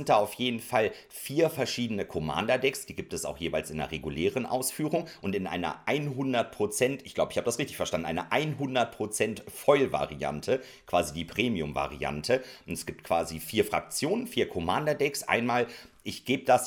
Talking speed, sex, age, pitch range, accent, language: 165 wpm, male, 40-59, 85-135 Hz, German, German